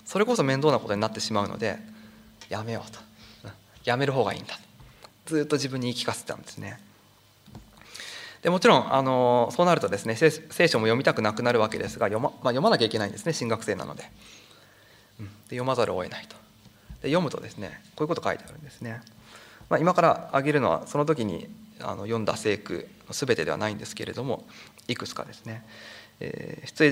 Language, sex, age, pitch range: Japanese, male, 20-39, 105-140 Hz